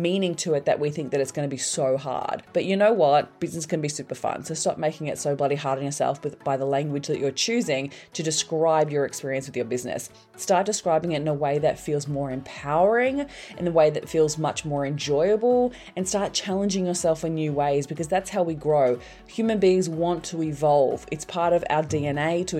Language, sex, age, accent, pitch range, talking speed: English, female, 20-39, Australian, 145-185 Hz, 225 wpm